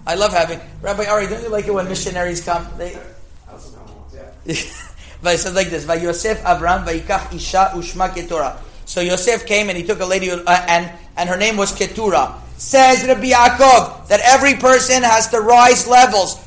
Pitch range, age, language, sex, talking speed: 190-225 Hz, 30-49, English, male, 155 wpm